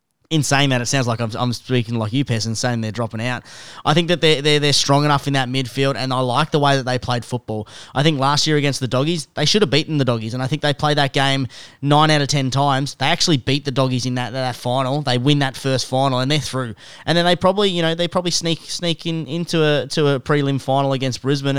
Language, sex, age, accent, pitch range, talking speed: English, male, 20-39, Australian, 130-150 Hz, 265 wpm